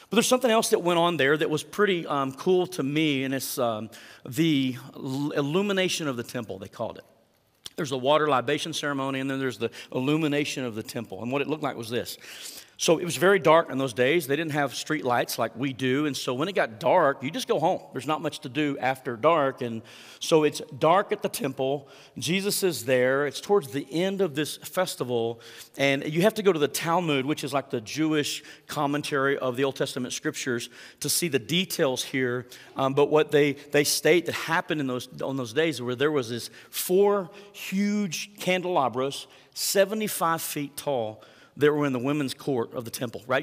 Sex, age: male, 40-59